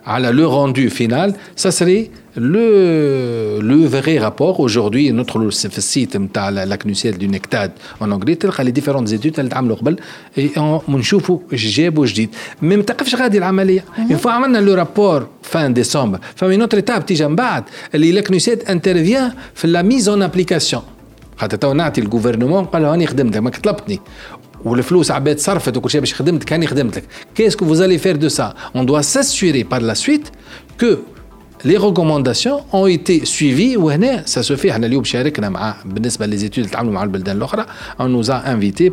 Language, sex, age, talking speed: Arabic, male, 40-59, 195 wpm